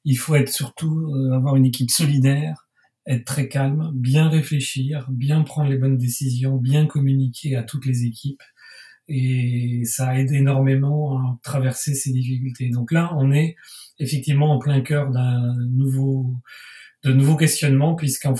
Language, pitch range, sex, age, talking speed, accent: French, 125-145 Hz, male, 40-59, 150 wpm, French